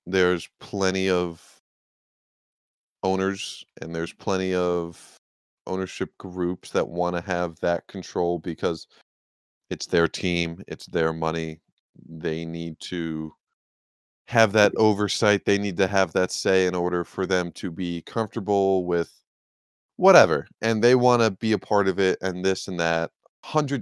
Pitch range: 85-105 Hz